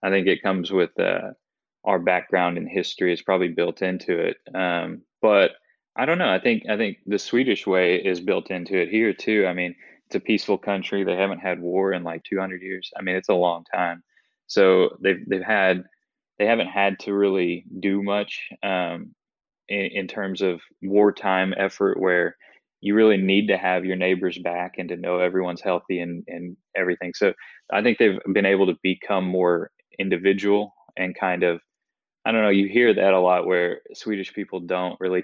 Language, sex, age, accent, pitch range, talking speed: English, male, 20-39, American, 90-95 Hz, 195 wpm